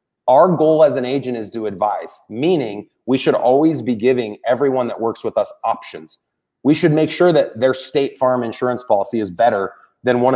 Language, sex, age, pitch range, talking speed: English, male, 30-49, 110-140 Hz, 195 wpm